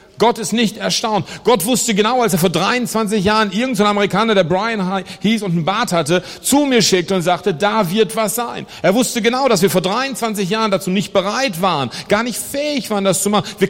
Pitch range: 190-245 Hz